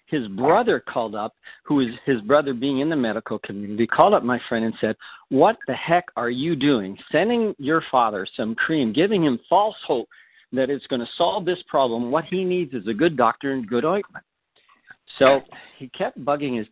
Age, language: 50-69, English